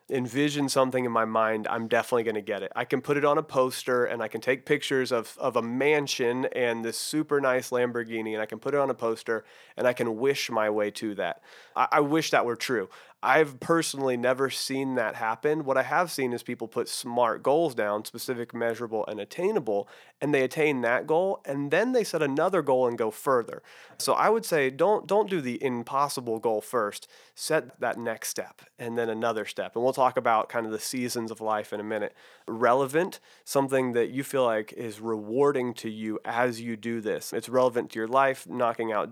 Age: 30-49